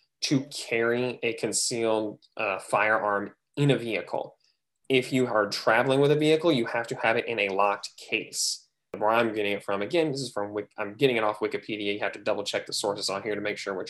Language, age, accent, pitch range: English, 20-39, American, 110-140 Hz